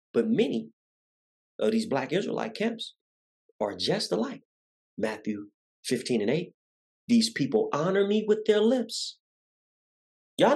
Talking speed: 125 wpm